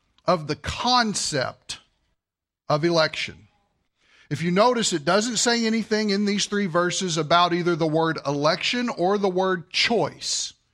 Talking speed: 140 wpm